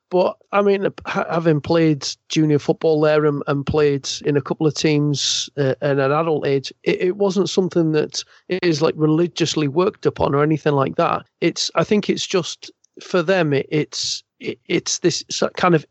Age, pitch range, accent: 40-59, 150-180 Hz, British